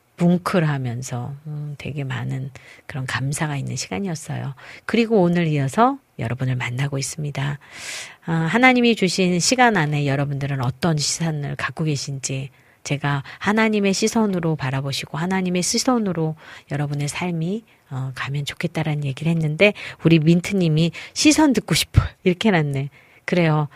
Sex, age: female, 40-59